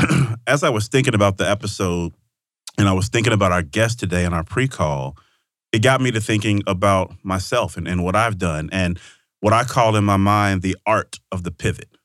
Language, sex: English, male